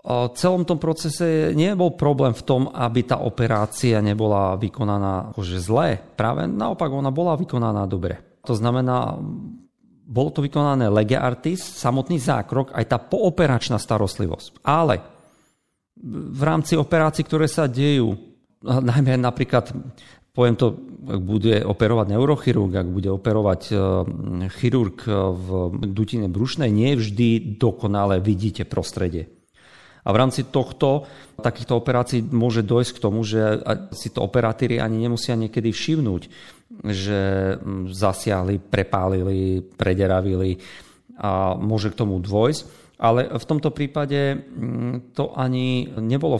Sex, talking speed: male, 125 wpm